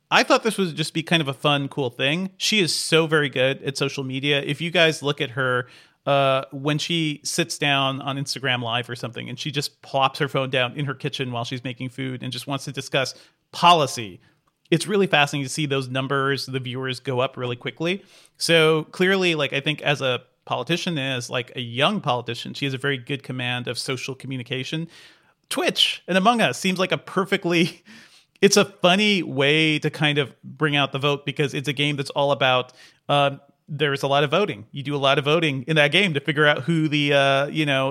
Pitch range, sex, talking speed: 135-165 Hz, male, 220 wpm